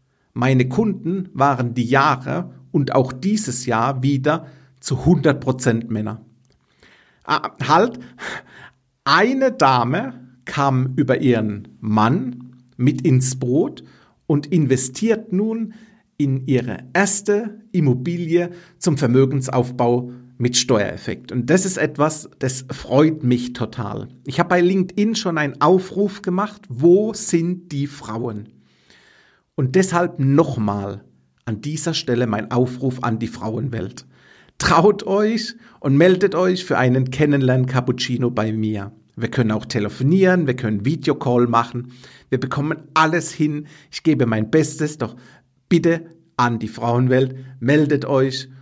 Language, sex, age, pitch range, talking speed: German, male, 50-69, 120-165 Hz, 125 wpm